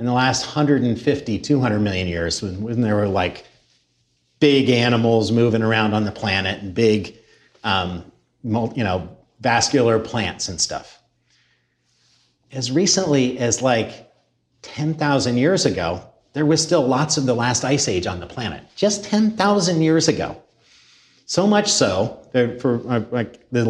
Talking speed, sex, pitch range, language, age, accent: 150 wpm, male, 115-155 Hz, English, 40-59, American